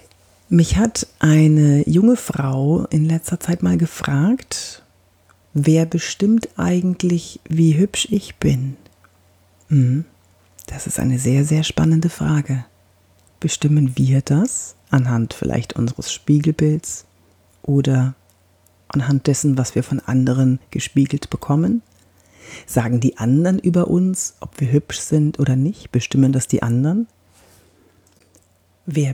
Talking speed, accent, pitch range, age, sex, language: 115 wpm, German, 100-155 Hz, 40-59, female, German